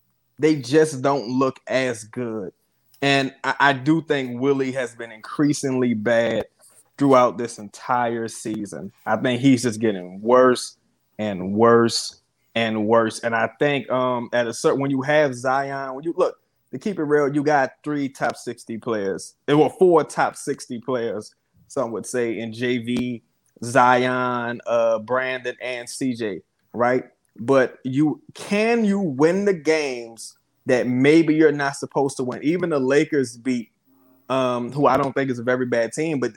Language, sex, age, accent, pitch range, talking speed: English, male, 20-39, American, 120-155 Hz, 165 wpm